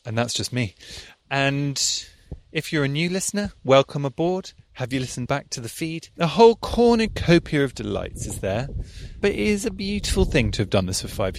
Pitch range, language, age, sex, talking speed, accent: 105-155 Hz, English, 30-49, male, 200 wpm, British